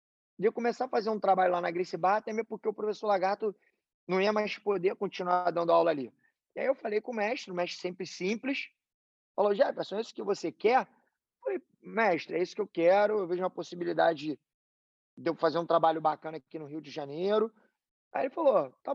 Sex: male